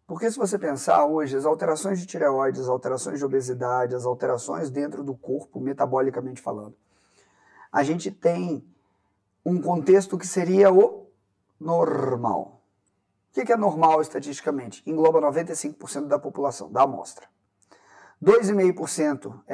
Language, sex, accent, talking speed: Portuguese, male, Brazilian, 125 wpm